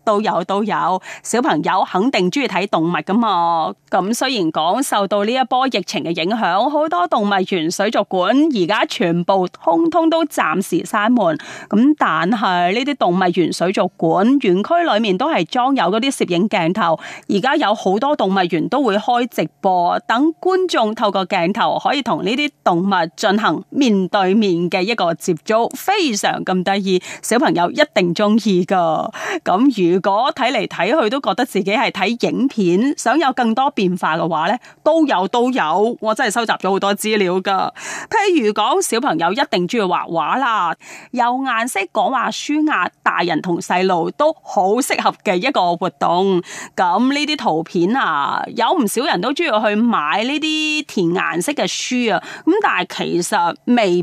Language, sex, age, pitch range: Chinese, female, 30-49, 185-280 Hz